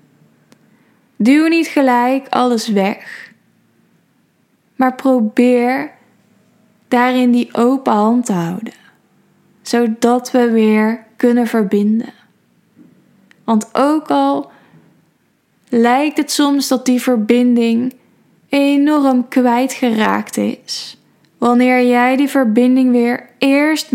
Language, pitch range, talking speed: Dutch, 220-260 Hz, 90 wpm